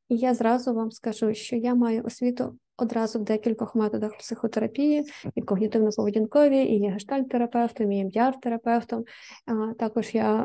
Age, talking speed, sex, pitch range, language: 20-39, 130 wpm, female, 220-245 Hz, Ukrainian